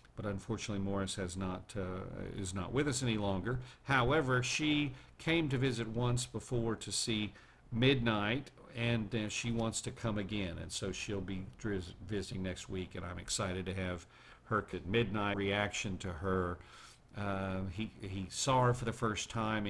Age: 50-69